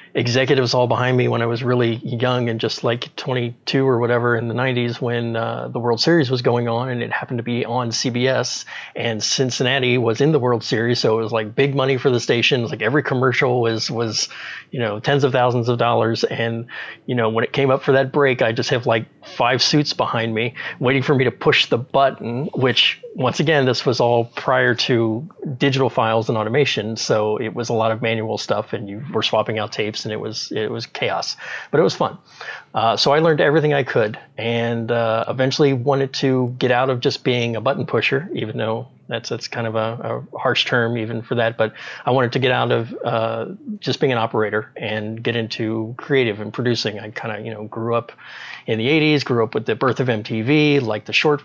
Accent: American